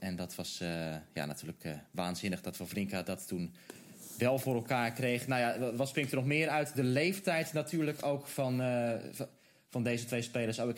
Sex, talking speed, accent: male, 210 wpm, Dutch